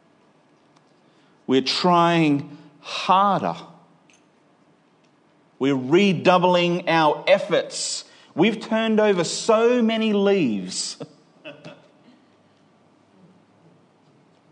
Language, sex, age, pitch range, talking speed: English, male, 40-59, 150-190 Hz, 55 wpm